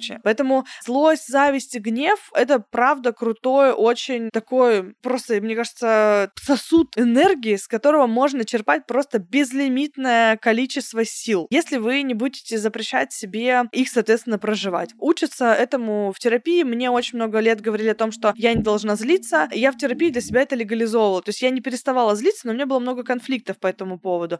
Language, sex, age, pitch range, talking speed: Russian, female, 20-39, 215-265 Hz, 175 wpm